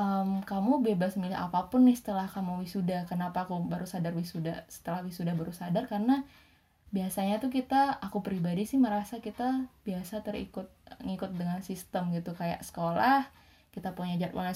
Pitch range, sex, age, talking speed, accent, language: 175-210 Hz, female, 20-39, 155 wpm, native, Indonesian